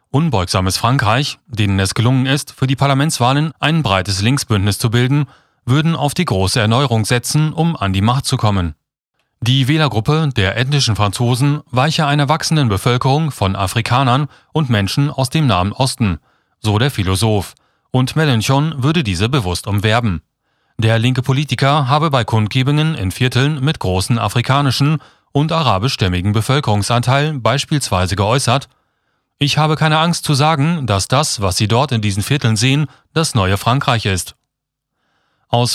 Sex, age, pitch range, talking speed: male, 30-49, 110-145 Hz, 150 wpm